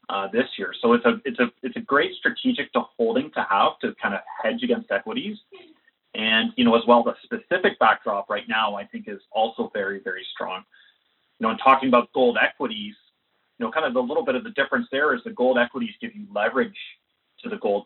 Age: 30-49